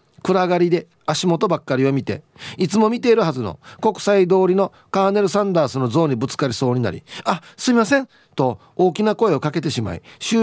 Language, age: Japanese, 40-59